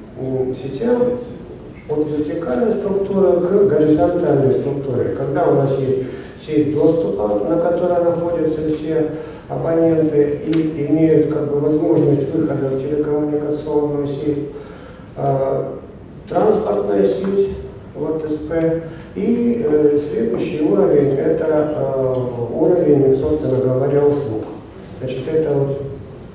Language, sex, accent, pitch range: Russian, male, native, 135-160 Hz